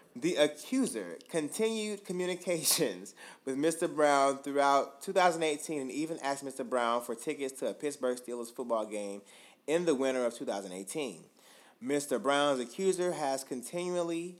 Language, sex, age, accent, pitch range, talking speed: English, male, 20-39, American, 120-155 Hz, 135 wpm